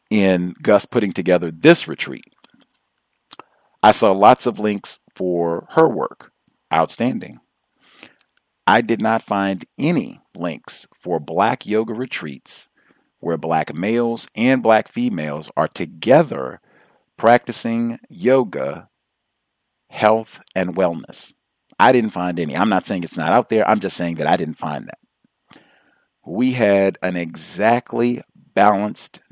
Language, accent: English, American